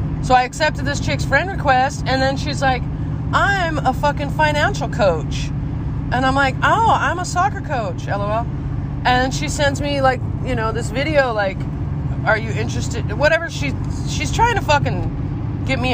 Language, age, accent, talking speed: English, 20-39, American, 175 wpm